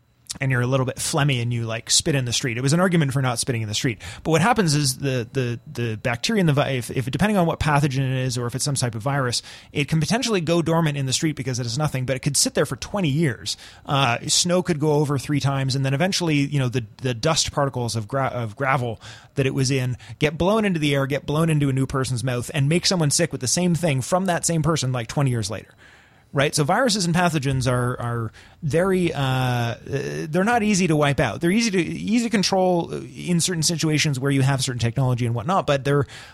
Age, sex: 30-49, male